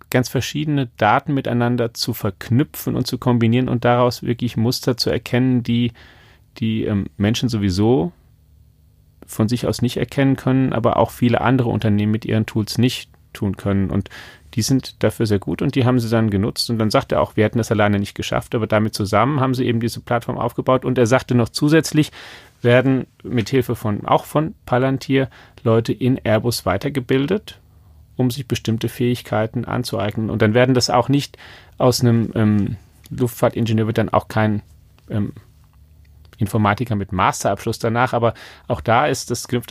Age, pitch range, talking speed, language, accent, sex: 40-59, 105-125 Hz, 175 wpm, German, German, male